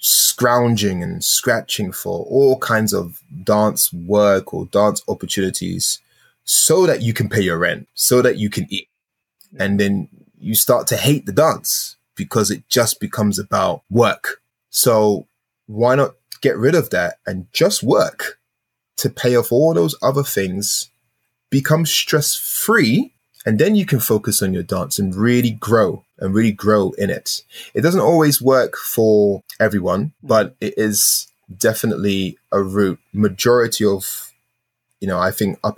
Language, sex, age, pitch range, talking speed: English, male, 20-39, 100-120 Hz, 155 wpm